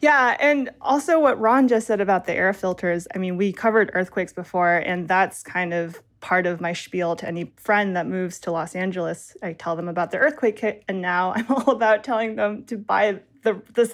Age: 20-39